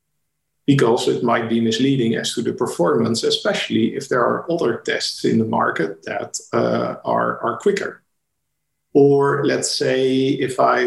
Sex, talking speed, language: male, 155 wpm, English